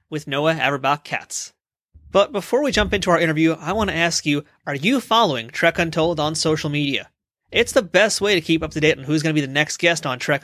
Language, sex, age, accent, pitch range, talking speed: English, male, 30-49, American, 160-205 Hz, 245 wpm